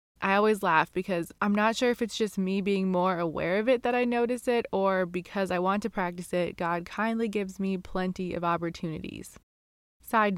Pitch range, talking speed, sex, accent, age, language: 180-215 Hz, 200 wpm, female, American, 20-39, English